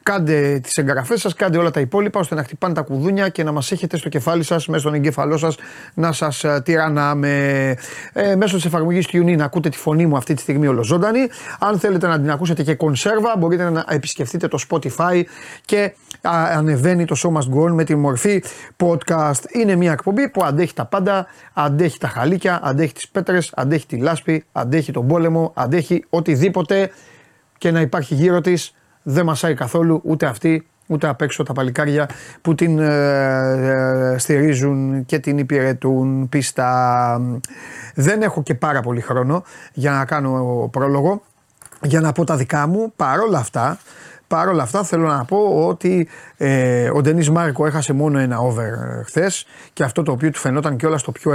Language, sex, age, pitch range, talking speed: Greek, male, 30-49, 140-170 Hz, 175 wpm